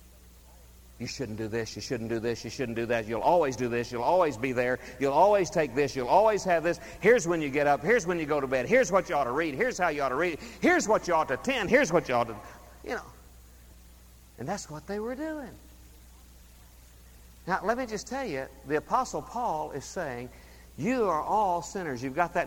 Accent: American